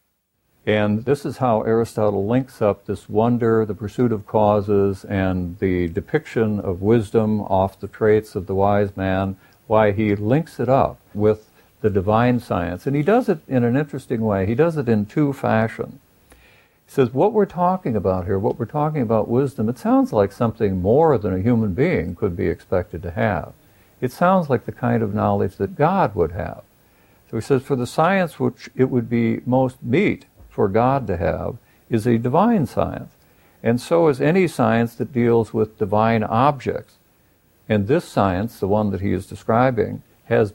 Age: 60-79